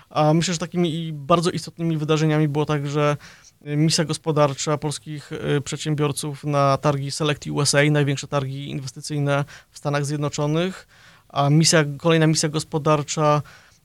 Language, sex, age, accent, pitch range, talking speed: Polish, male, 20-39, native, 145-155 Hz, 120 wpm